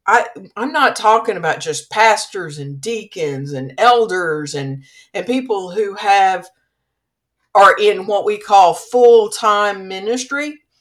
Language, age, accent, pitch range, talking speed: English, 50-69, American, 190-250 Hz, 120 wpm